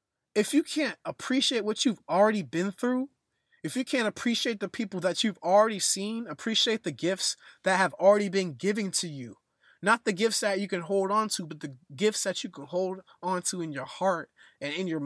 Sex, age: male, 20-39